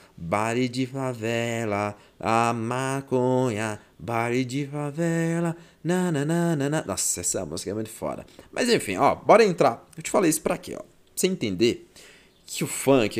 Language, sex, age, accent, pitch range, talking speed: Portuguese, male, 30-49, Brazilian, 100-145 Hz, 145 wpm